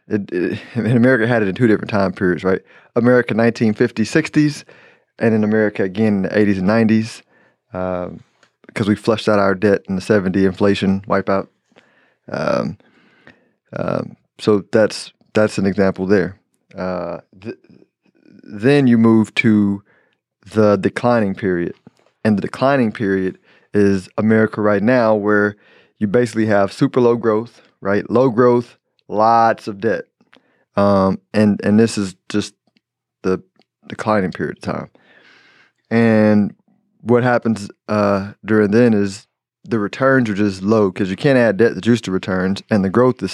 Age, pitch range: 30-49, 100-115 Hz